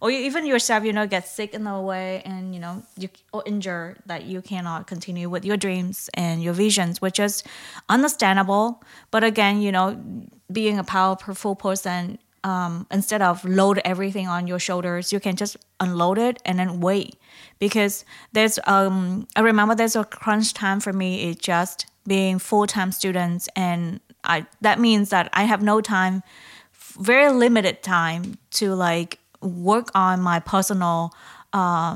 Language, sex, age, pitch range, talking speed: English, female, 20-39, 180-210 Hz, 165 wpm